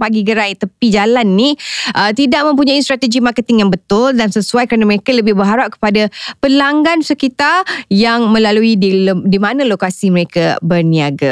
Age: 20-39